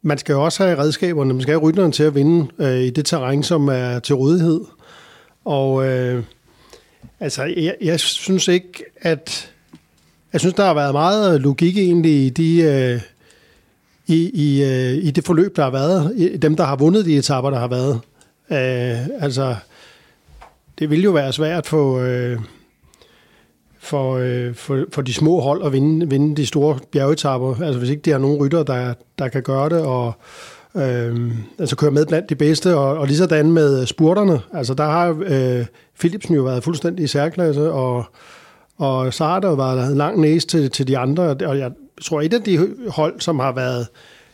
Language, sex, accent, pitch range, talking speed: Danish, male, native, 130-165 Hz, 185 wpm